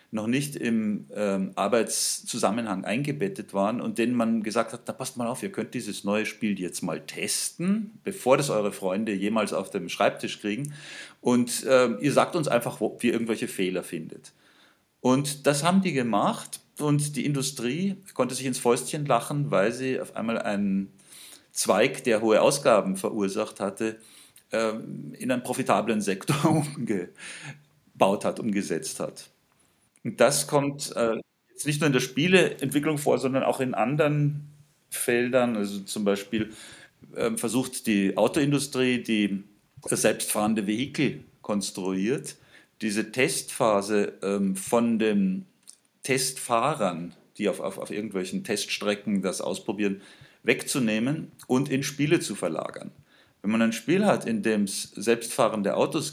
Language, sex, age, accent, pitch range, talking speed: German, male, 40-59, German, 105-140 Hz, 145 wpm